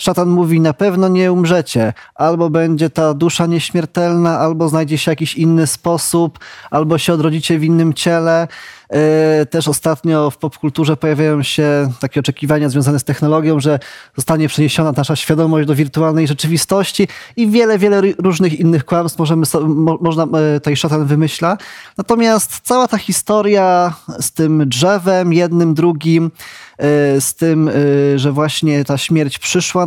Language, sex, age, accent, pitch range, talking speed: Polish, male, 20-39, native, 150-180 Hz, 155 wpm